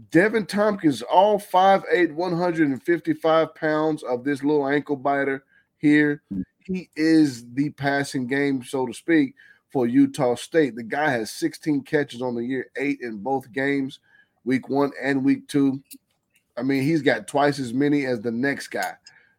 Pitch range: 125-145 Hz